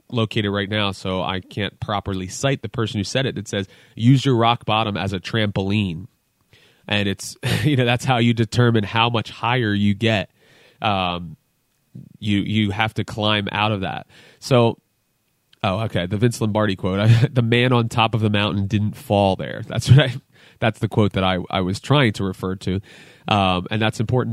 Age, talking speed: 30-49, 195 wpm